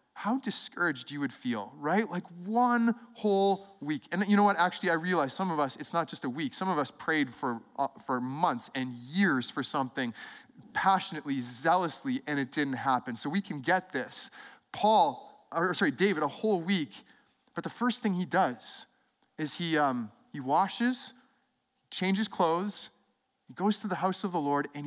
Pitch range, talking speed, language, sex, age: 190-265 Hz, 185 wpm, English, male, 20-39